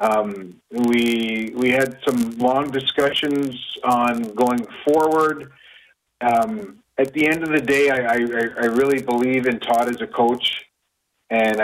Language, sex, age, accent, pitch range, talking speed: English, male, 40-59, American, 115-135 Hz, 145 wpm